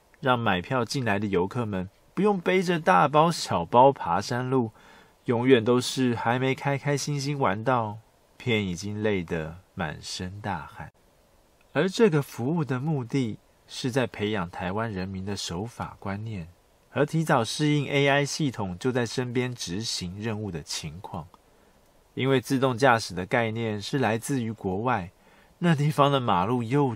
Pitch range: 110-145 Hz